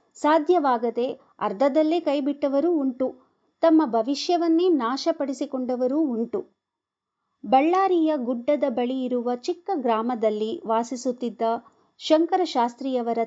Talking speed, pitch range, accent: 70 wpm, 225-290 Hz, native